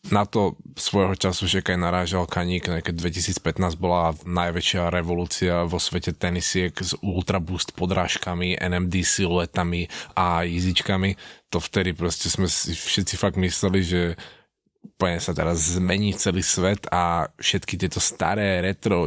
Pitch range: 90-95 Hz